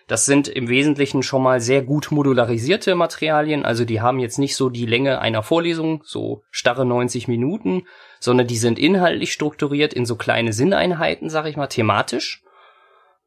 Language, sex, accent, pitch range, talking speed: German, male, German, 125-150 Hz, 165 wpm